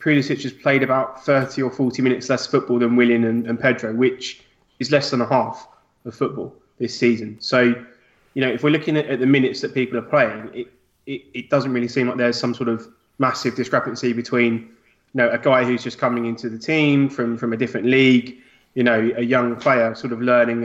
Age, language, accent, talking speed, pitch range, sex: 20-39, English, British, 220 wpm, 120-135 Hz, male